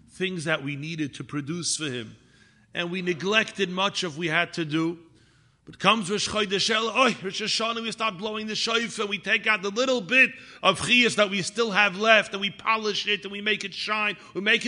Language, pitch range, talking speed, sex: English, 145-205 Hz, 215 wpm, male